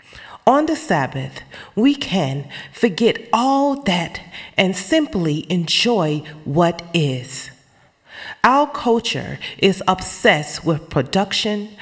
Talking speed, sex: 95 wpm, female